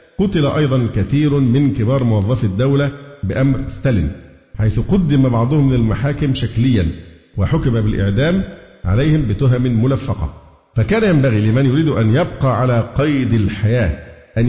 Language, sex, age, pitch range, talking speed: Arabic, male, 50-69, 110-140 Hz, 120 wpm